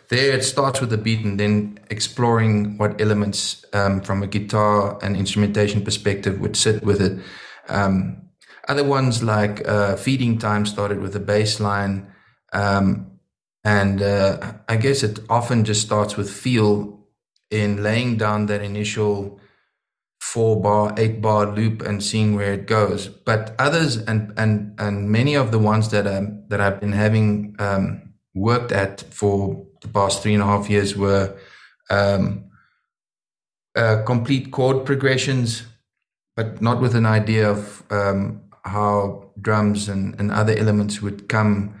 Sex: male